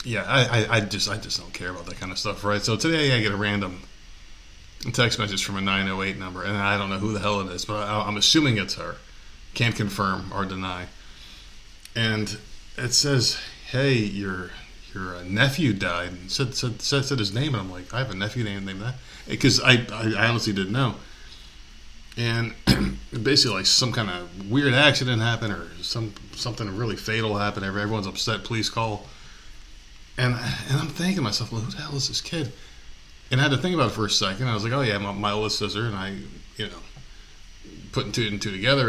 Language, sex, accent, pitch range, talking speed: English, male, American, 95-120 Hz, 215 wpm